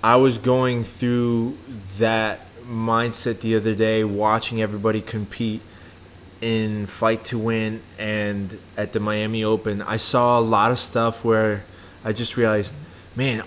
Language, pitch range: English, 110-130 Hz